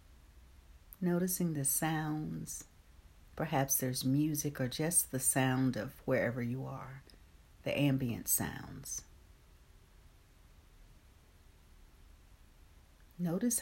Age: 60-79